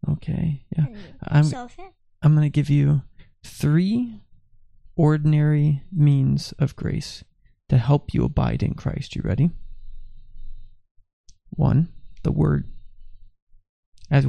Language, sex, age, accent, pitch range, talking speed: English, male, 30-49, American, 95-150 Hz, 105 wpm